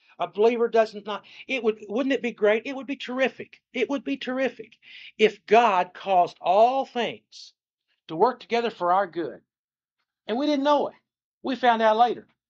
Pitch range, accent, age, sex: 185-240 Hz, American, 60-79, male